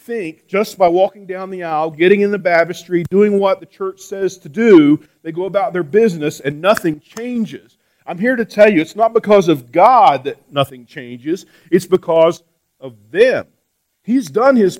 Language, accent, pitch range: English, American, 140-205 Hz